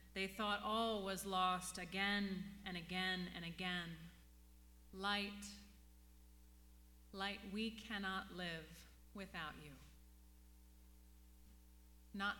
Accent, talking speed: American, 85 wpm